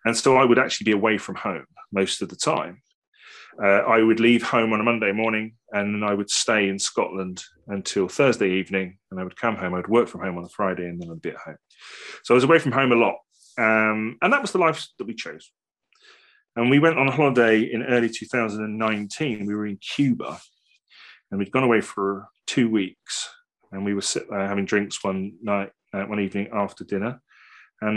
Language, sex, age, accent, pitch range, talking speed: English, male, 30-49, British, 100-120 Hz, 210 wpm